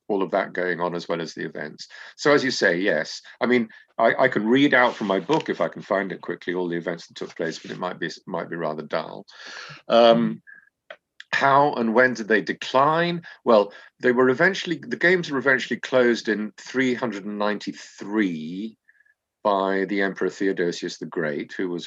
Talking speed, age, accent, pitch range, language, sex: 195 wpm, 50-69, British, 90-120 Hz, English, male